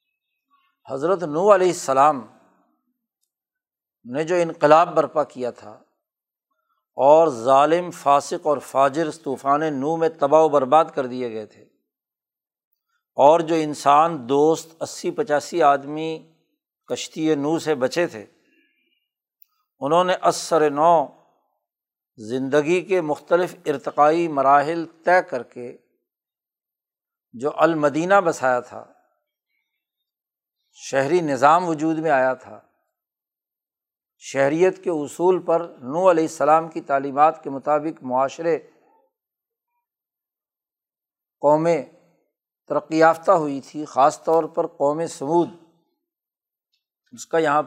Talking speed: 105 wpm